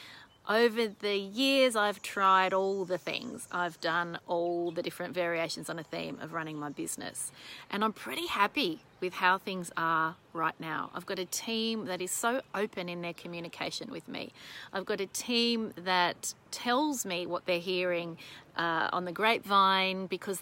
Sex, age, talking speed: female, 30-49, 175 wpm